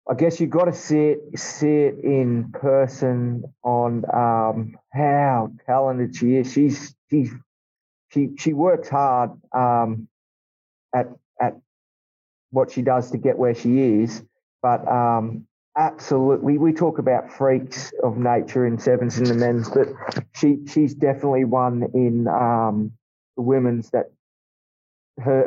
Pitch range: 115-135 Hz